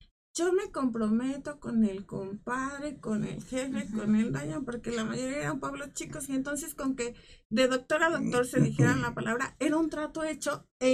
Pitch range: 210-290 Hz